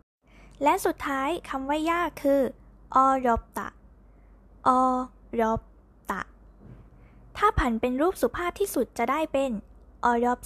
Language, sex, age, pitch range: Thai, female, 10-29, 235-290 Hz